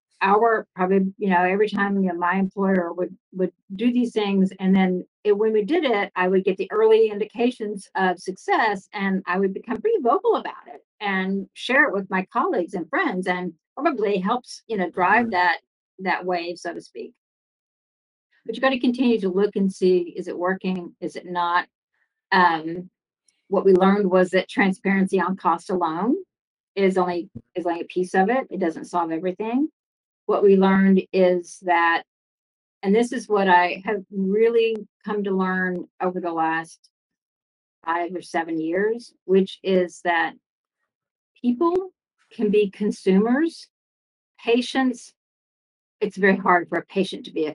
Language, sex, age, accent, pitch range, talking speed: English, female, 50-69, American, 180-225 Hz, 170 wpm